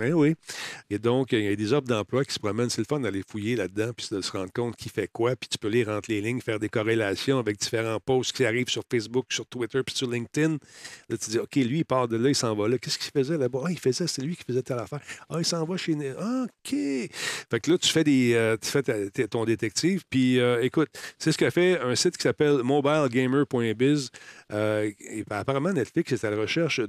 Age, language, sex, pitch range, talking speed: 40-59, French, male, 115-160 Hz, 265 wpm